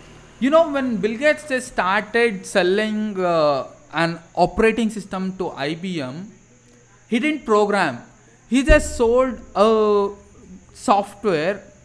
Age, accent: 20-39, Indian